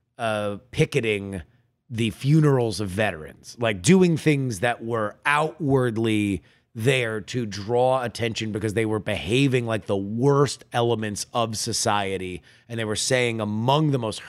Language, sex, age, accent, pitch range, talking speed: English, male, 30-49, American, 110-130 Hz, 140 wpm